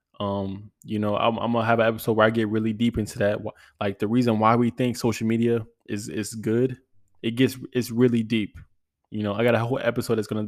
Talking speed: 235 wpm